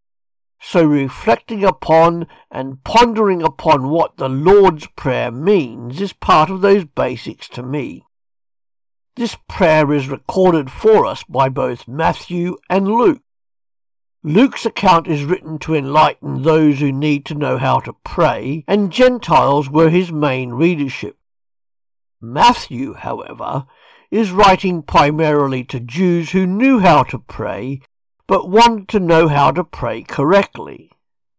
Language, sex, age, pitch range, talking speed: English, male, 60-79, 130-190 Hz, 130 wpm